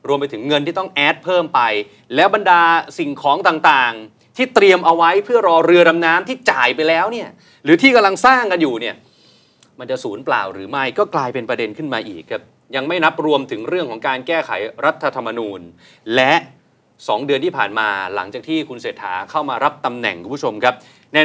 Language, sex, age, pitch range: Thai, male, 30-49, 130-185 Hz